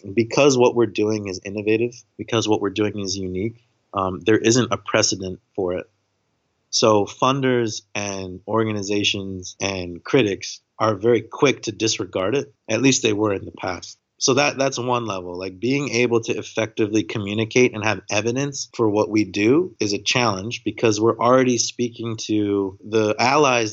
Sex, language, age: male, English, 30-49